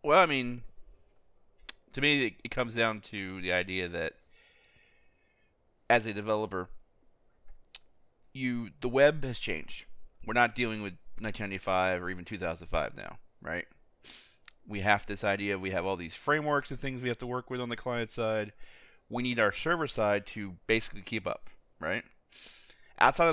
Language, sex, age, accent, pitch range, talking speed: English, male, 30-49, American, 100-140 Hz, 155 wpm